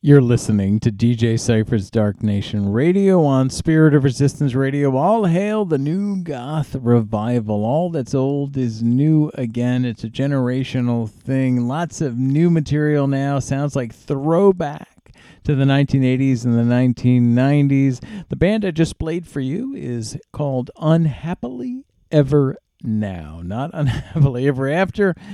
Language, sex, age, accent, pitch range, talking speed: English, male, 40-59, American, 115-160 Hz, 140 wpm